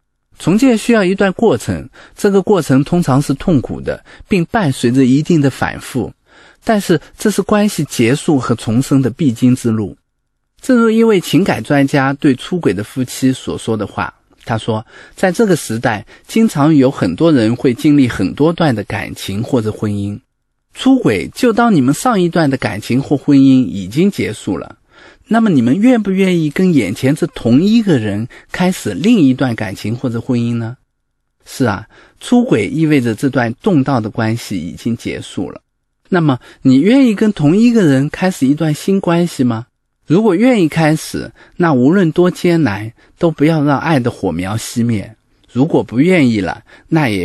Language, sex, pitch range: Chinese, male, 115-170 Hz